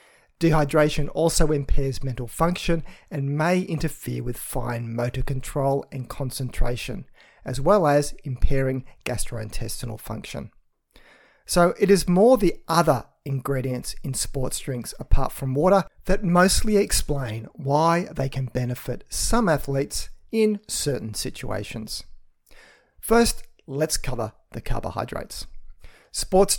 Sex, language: male, English